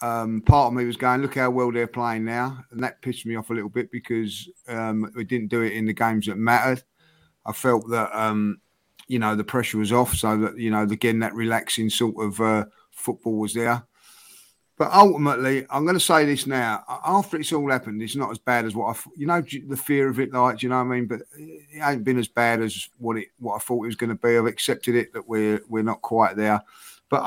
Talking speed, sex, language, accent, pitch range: 250 wpm, male, English, British, 110-125 Hz